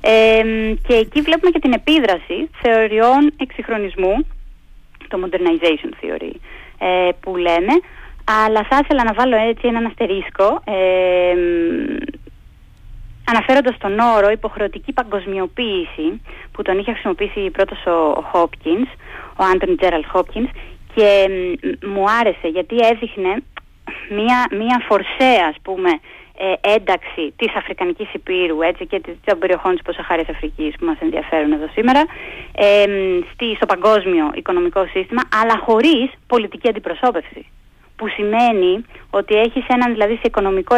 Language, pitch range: Greek, 185-245 Hz